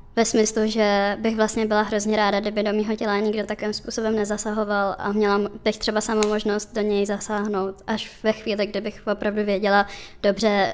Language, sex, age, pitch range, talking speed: Czech, male, 20-39, 210-235 Hz, 180 wpm